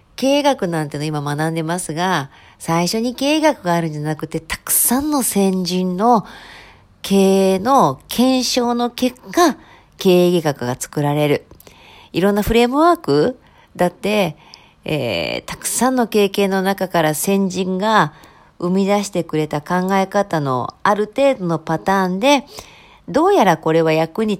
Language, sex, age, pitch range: Japanese, female, 40-59, 160-225 Hz